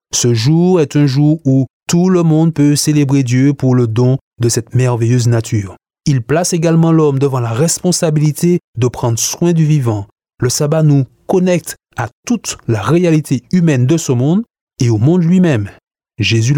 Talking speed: 175 wpm